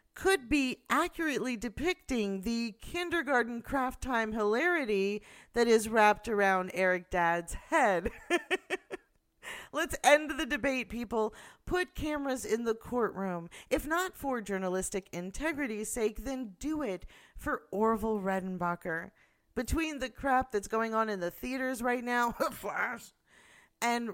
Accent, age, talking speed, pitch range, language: American, 40-59, 125 wpm, 190-260 Hz, English